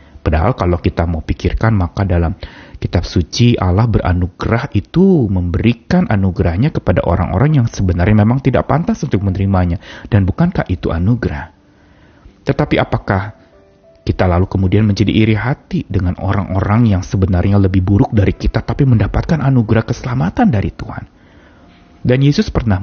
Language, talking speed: Indonesian, 135 wpm